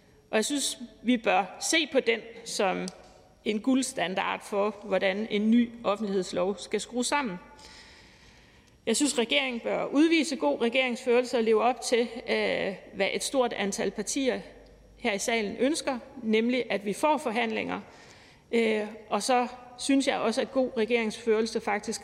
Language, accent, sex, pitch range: Danish, native, female, 210-260 Hz